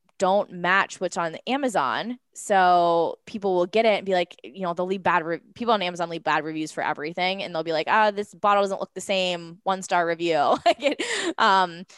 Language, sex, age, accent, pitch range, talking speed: English, female, 10-29, American, 175-220 Hz, 215 wpm